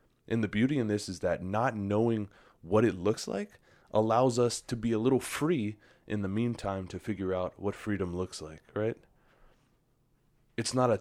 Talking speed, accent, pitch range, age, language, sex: 185 wpm, American, 90-110 Hz, 20-39, English, male